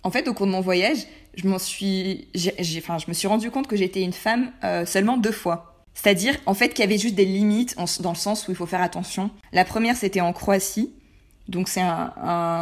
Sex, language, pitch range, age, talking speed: female, French, 180-215 Hz, 20-39, 245 wpm